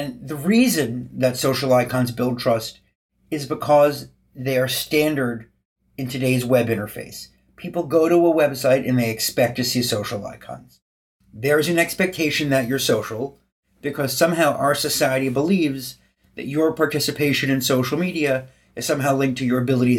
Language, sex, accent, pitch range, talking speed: English, male, American, 125-150 Hz, 155 wpm